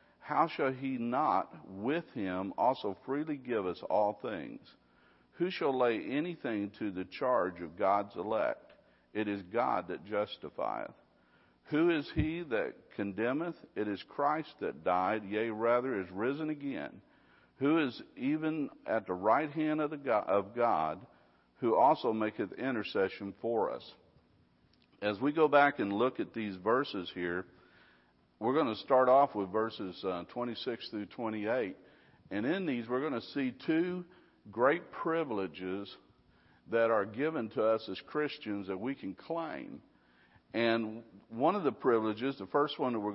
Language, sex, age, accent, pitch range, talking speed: English, male, 50-69, American, 100-140 Hz, 155 wpm